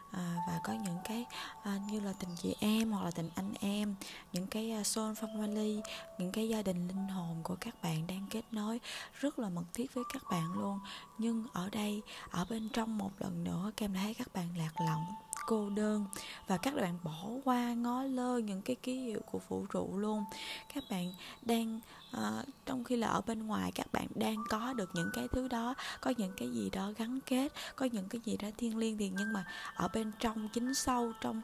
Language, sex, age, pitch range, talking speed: Vietnamese, female, 20-39, 185-235 Hz, 220 wpm